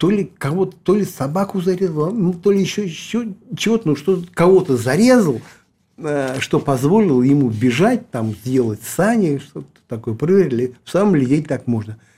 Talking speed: 155 wpm